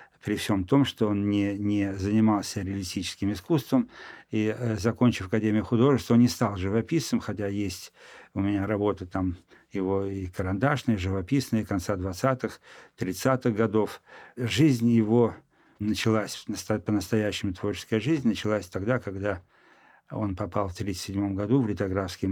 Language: Russian